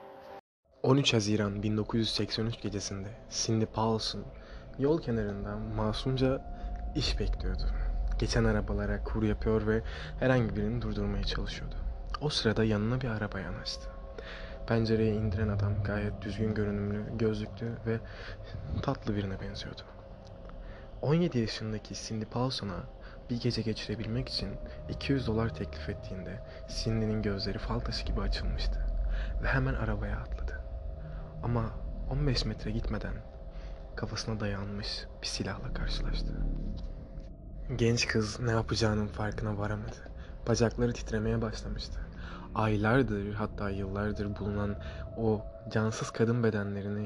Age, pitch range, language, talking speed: 20-39, 100-115 Hz, Turkish, 110 wpm